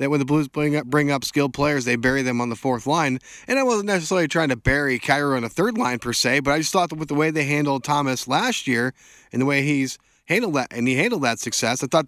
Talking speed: 260 wpm